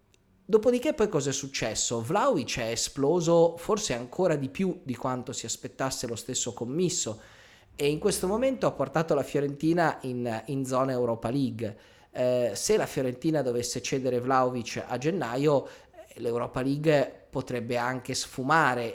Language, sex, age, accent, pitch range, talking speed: Italian, male, 30-49, native, 120-145 Hz, 145 wpm